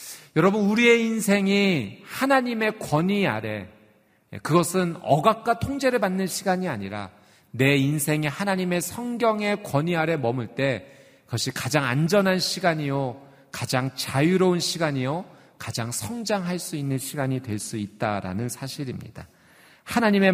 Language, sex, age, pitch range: Korean, male, 40-59, 125-180 Hz